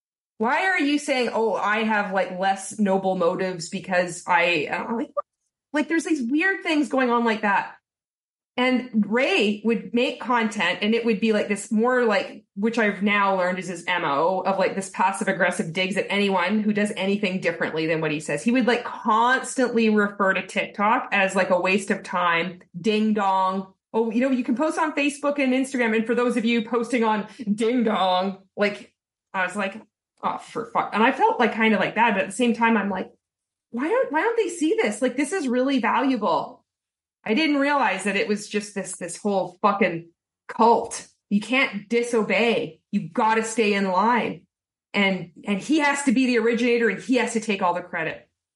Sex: female